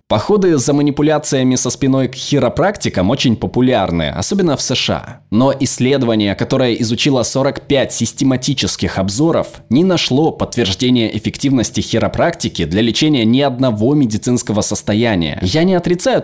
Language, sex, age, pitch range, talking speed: Russian, male, 20-39, 105-140 Hz, 120 wpm